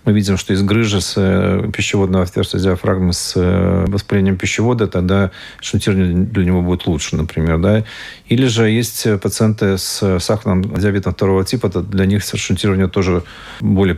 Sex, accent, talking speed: male, native, 140 wpm